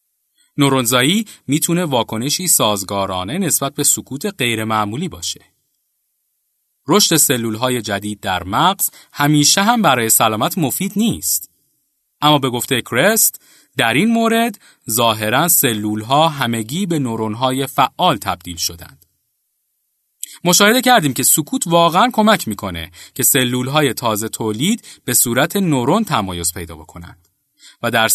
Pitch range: 110-170 Hz